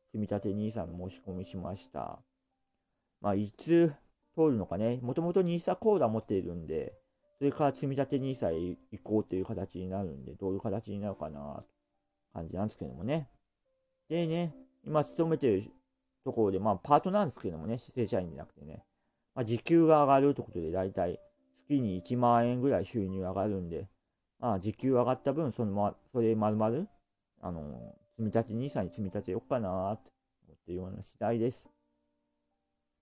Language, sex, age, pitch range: Japanese, male, 40-59, 95-140 Hz